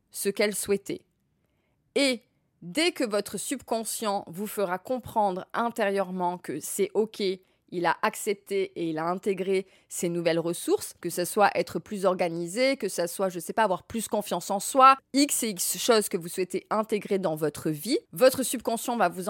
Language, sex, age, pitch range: French, female, 20-39, 185-235 Hz